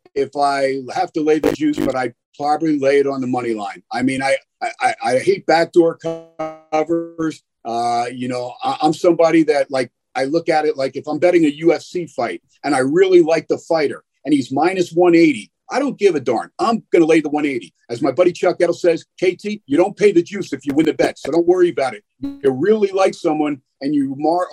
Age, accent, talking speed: 50-69, American, 225 wpm